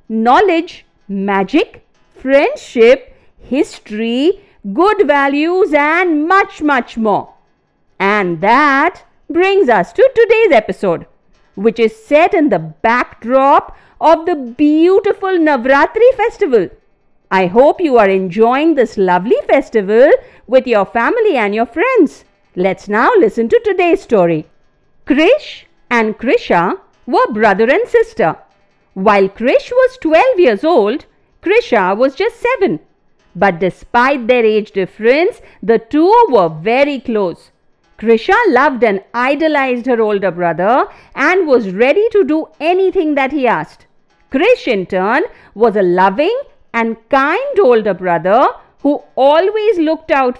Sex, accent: female, Indian